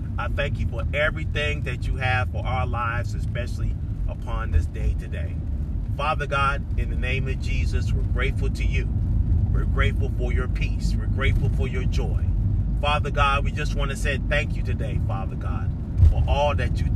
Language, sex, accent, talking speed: English, male, American, 190 wpm